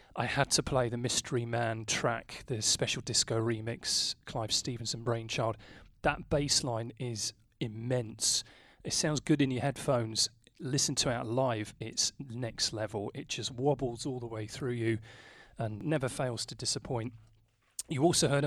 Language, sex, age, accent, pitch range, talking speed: English, male, 30-49, British, 115-145 Hz, 160 wpm